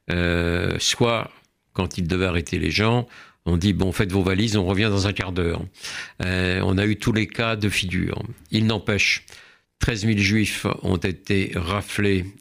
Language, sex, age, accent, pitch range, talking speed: French, male, 60-79, French, 90-100 Hz, 180 wpm